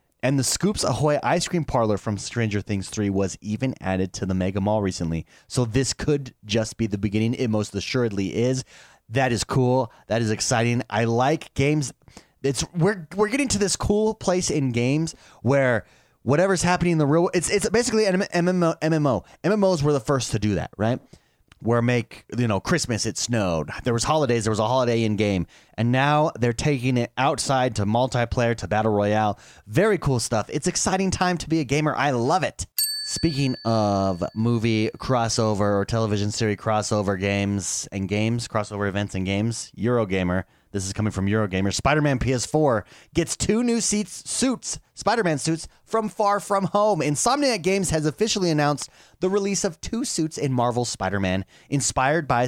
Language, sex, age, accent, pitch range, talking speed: English, male, 30-49, American, 110-155 Hz, 180 wpm